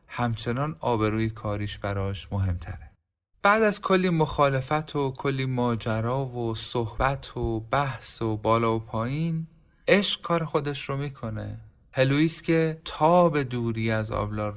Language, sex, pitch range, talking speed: Persian, male, 105-135 Hz, 130 wpm